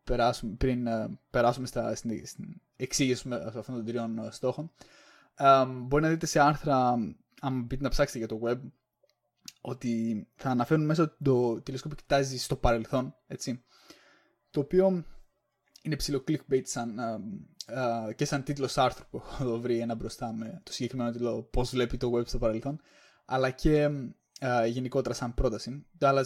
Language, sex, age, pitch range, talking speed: Greek, male, 20-39, 120-140 Hz, 140 wpm